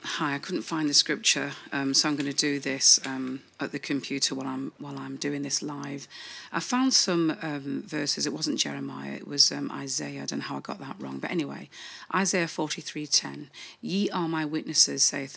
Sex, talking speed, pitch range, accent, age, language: female, 205 wpm, 145-160 Hz, British, 40-59, English